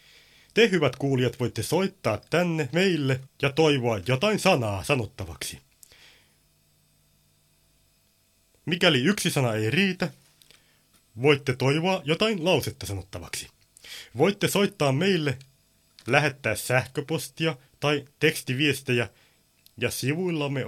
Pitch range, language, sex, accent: 115-155 Hz, Finnish, male, native